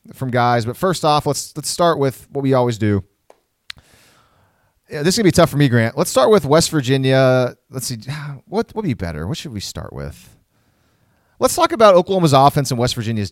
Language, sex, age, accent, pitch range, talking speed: English, male, 30-49, American, 110-150 Hz, 210 wpm